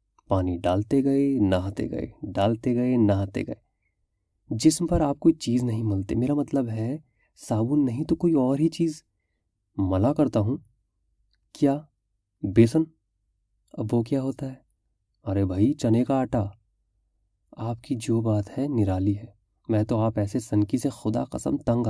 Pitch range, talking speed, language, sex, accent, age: 100-135 Hz, 155 wpm, Hindi, male, native, 30-49